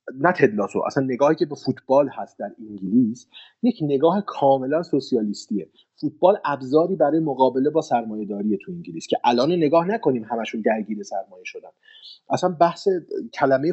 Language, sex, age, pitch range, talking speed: Persian, male, 30-49, 125-175 Hz, 145 wpm